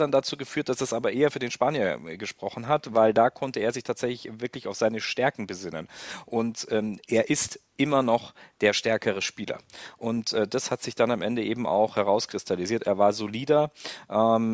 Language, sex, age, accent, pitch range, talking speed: German, male, 40-59, German, 100-120 Hz, 195 wpm